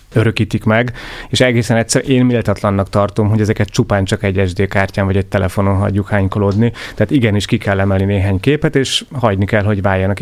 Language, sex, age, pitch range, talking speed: Hungarian, male, 30-49, 95-110 Hz, 180 wpm